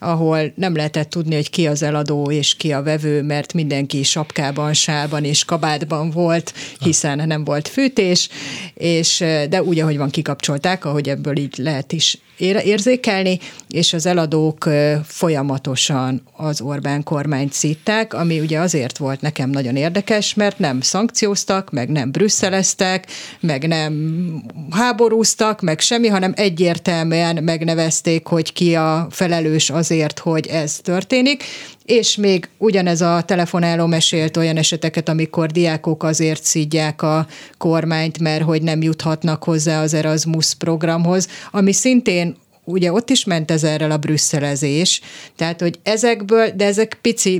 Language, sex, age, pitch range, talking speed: Hungarian, female, 30-49, 155-185 Hz, 140 wpm